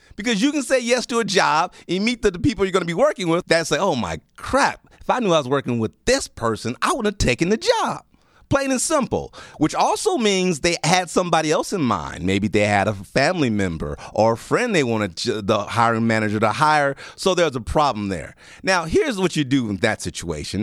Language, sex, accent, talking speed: English, male, American, 230 wpm